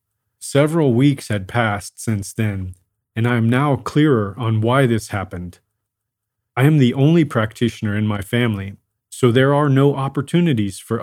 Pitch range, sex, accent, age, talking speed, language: 105-135 Hz, male, American, 40-59, 160 wpm, English